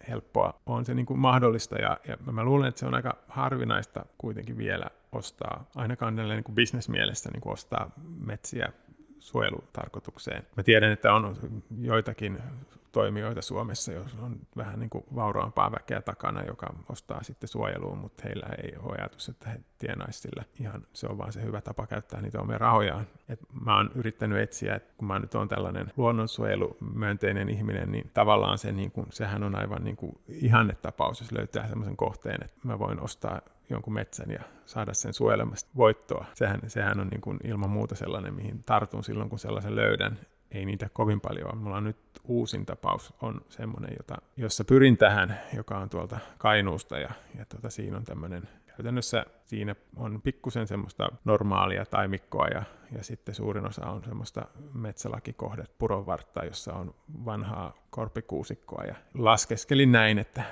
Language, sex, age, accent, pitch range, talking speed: Finnish, male, 30-49, native, 105-120 Hz, 165 wpm